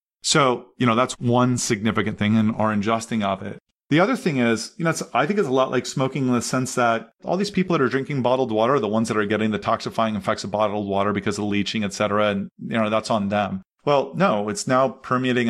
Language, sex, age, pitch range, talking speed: English, male, 30-49, 105-125 Hz, 260 wpm